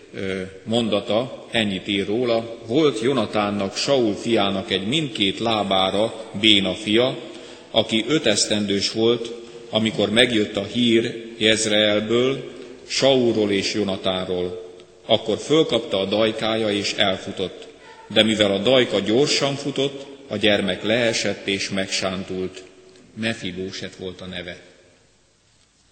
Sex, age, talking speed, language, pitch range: male, 40-59, 105 wpm, Hungarian, 95-115 Hz